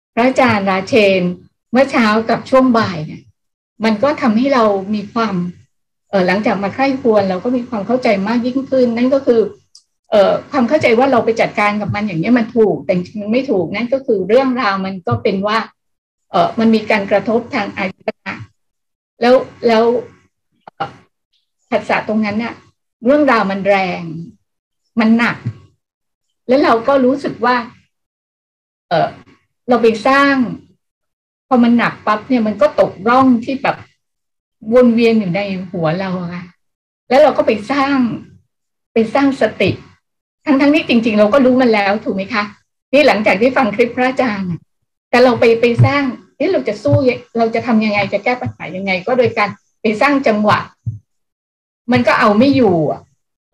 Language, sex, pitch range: Thai, female, 200-250 Hz